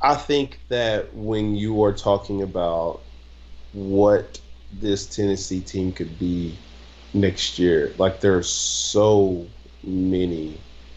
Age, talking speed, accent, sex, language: 30-49, 115 wpm, American, male, English